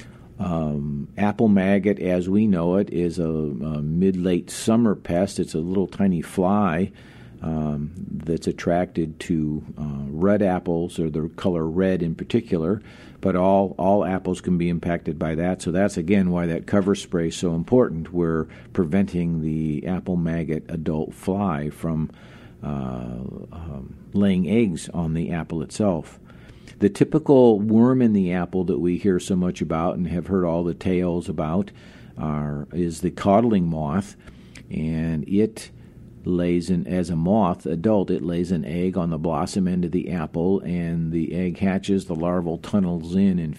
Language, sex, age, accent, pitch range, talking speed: English, male, 50-69, American, 80-95 Hz, 160 wpm